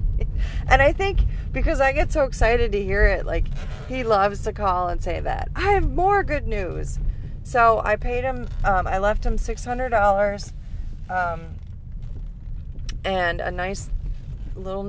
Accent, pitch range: American, 170-235 Hz